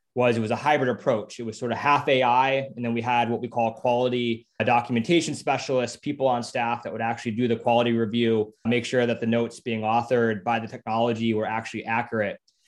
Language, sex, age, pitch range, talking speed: English, male, 20-39, 115-135 Hz, 215 wpm